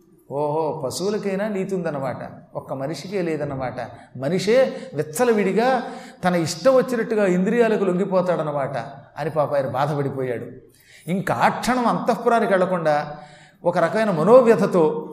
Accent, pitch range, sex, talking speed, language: native, 150-200 Hz, male, 100 wpm, Telugu